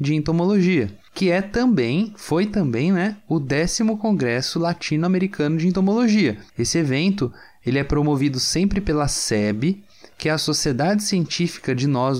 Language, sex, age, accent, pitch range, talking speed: Portuguese, male, 20-39, Brazilian, 130-195 Hz, 145 wpm